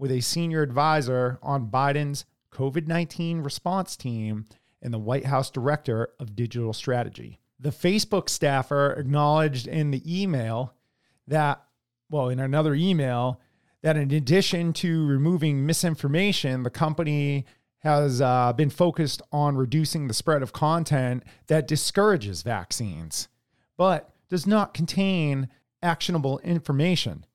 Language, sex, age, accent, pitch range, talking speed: English, male, 40-59, American, 125-165 Hz, 125 wpm